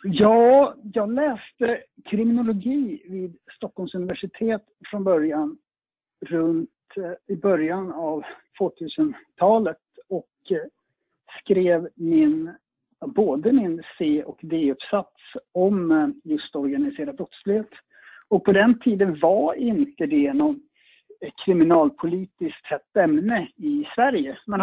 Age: 60-79